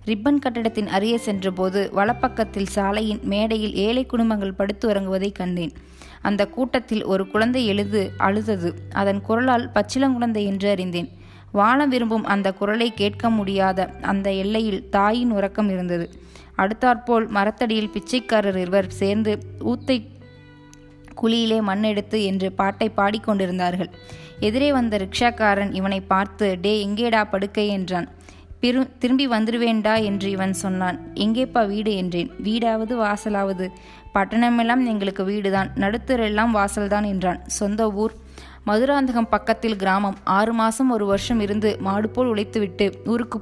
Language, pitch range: Tamil, 195-225 Hz